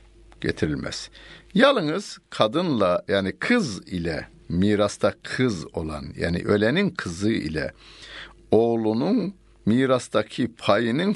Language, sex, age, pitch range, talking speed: Turkish, male, 60-79, 85-115 Hz, 85 wpm